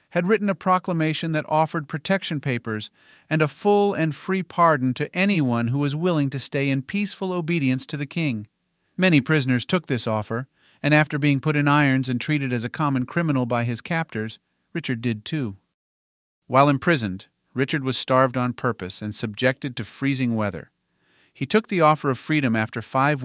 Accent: American